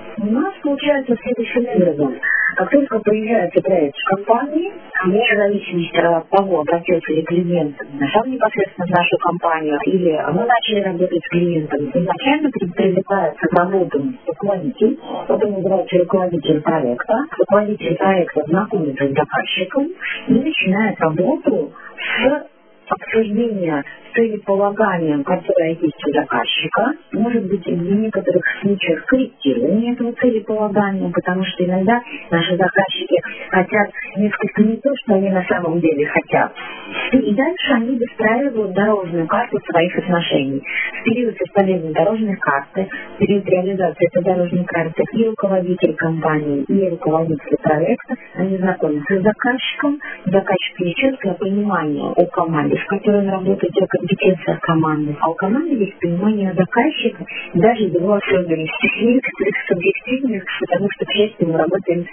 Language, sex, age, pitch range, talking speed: Russian, female, 40-59, 175-225 Hz, 130 wpm